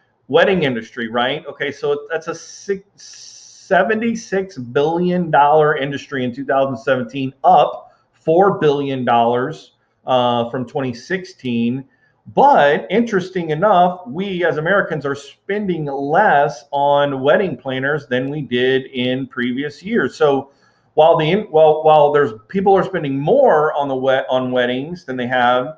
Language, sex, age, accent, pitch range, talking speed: English, male, 40-59, American, 125-160 Hz, 130 wpm